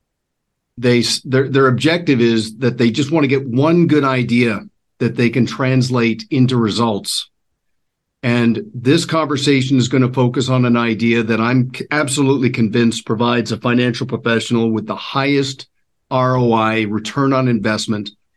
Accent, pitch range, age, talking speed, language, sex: American, 120-140 Hz, 50-69, 145 wpm, English, male